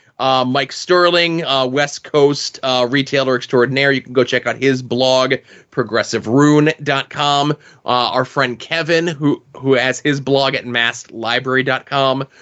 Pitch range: 125-150 Hz